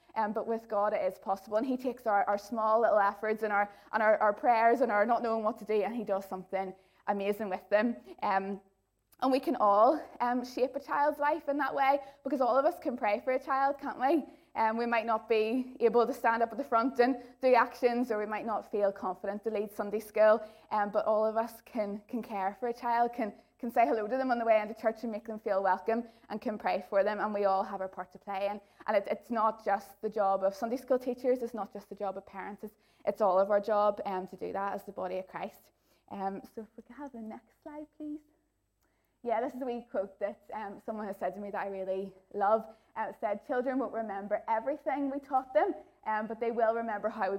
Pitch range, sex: 200-245 Hz, female